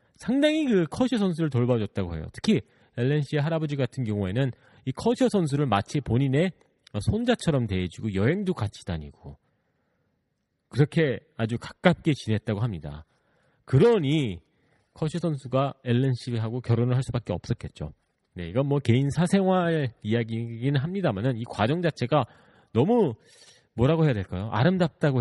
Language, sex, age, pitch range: Korean, male, 40-59, 110-160 Hz